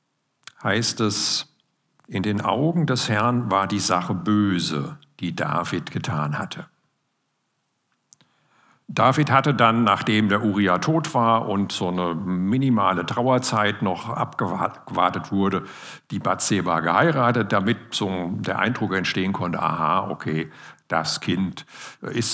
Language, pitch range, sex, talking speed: German, 95-135 Hz, male, 120 wpm